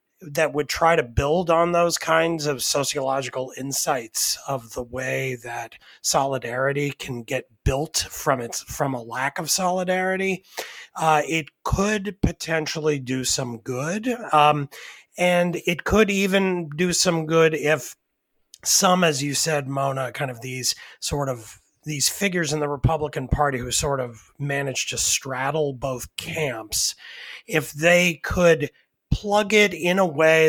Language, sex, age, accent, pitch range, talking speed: English, male, 30-49, American, 130-165 Hz, 145 wpm